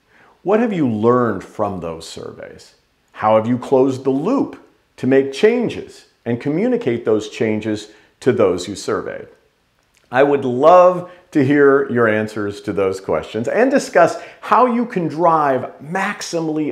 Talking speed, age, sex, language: 145 wpm, 50-69, male, English